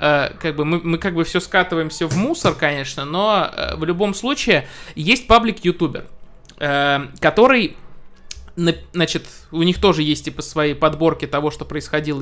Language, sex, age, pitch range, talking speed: Russian, male, 20-39, 150-190 Hz, 145 wpm